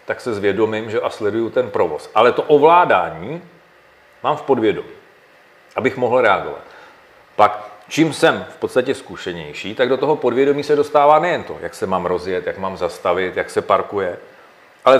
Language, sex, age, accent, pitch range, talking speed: Czech, male, 40-59, native, 120-160 Hz, 170 wpm